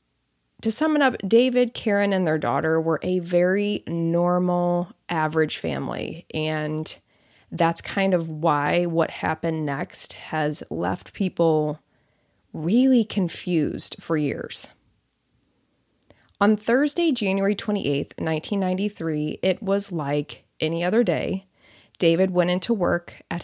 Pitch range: 155-195 Hz